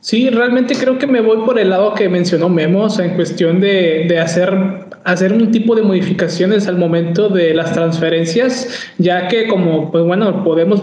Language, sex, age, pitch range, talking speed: Spanish, male, 20-39, 175-210 Hz, 195 wpm